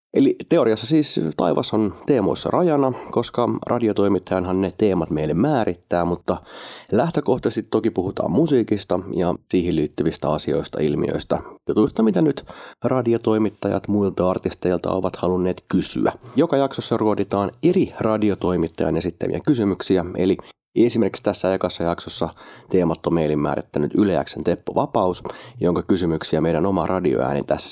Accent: native